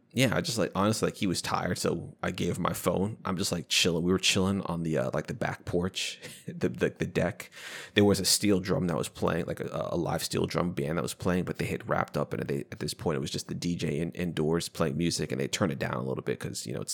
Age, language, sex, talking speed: 20-39, English, male, 285 wpm